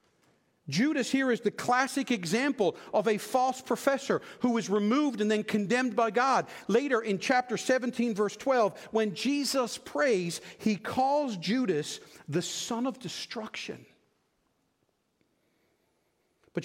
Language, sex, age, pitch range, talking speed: English, male, 50-69, 175-235 Hz, 125 wpm